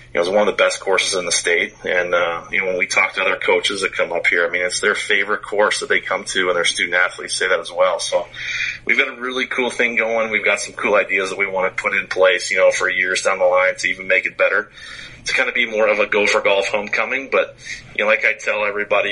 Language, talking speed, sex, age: English, 290 wpm, male, 30-49